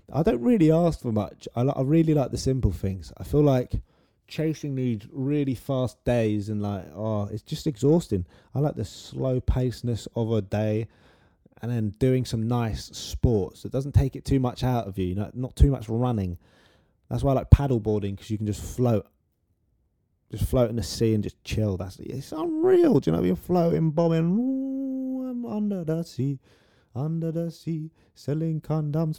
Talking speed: 195 wpm